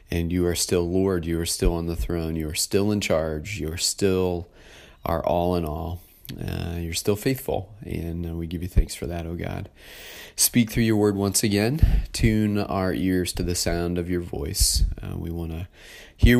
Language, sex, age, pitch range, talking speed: English, male, 30-49, 80-100 Hz, 210 wpm